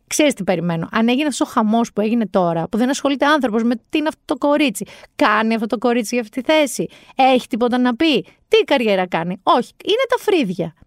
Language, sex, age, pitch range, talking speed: Greek, female, 30-49, 195-290 Hz, 220 wpm